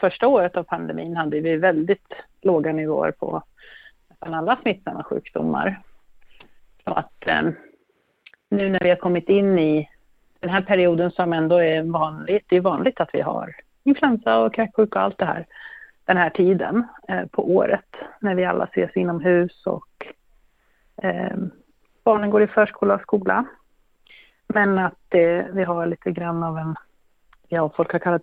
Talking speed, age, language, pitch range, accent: 160 wpm, 30-49, Swedish, 170-205 Hz, native